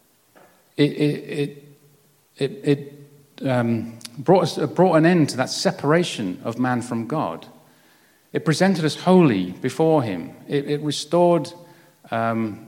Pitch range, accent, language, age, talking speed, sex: 115-155 Hz, British, English, 50-69, 135 wpm, male